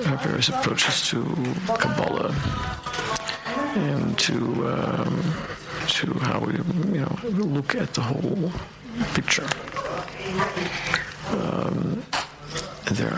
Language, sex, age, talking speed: English, male, 60-79, 90 wpm